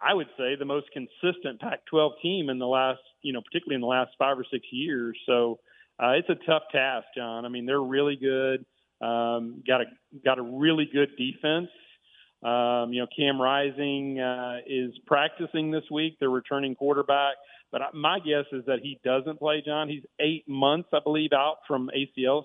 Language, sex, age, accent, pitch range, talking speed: English, male, 40-59, American, 130-145 Hz, 190 wpm